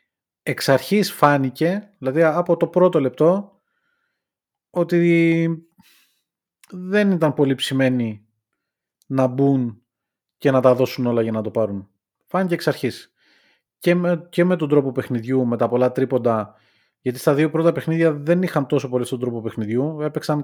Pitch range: 125-165 Hz